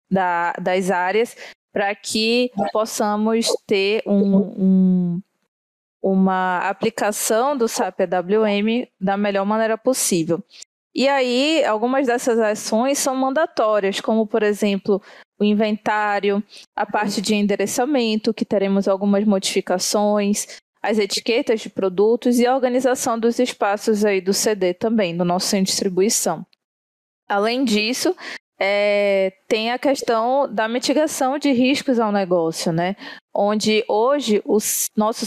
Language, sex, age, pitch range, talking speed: Portuguese, female, 20-39, 200-245 Hz, 125 wpm